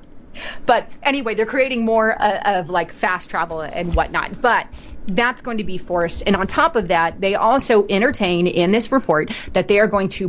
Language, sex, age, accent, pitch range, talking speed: English, female, 30-49, American, 175-215 Hz, 200 wpm